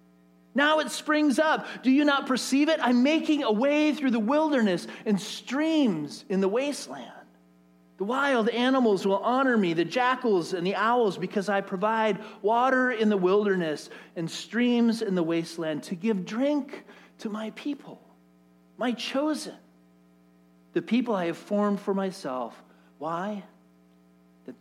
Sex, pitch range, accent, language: male, 175-245 Hz, American, English